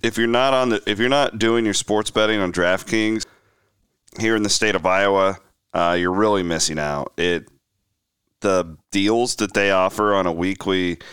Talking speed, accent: 185 wpm, American